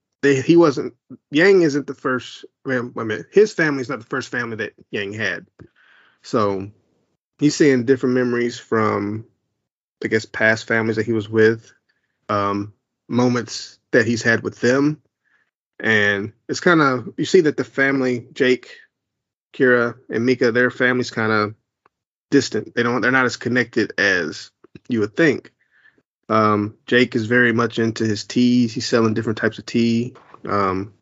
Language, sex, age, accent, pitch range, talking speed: English, male, 30-49, American, 110-130 Hz, 155 wpm